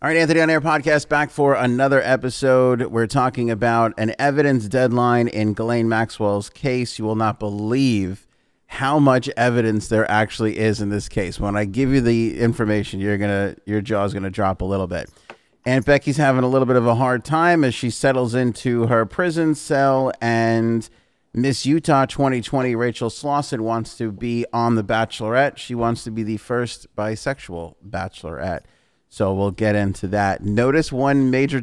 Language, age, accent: English, 30-49, American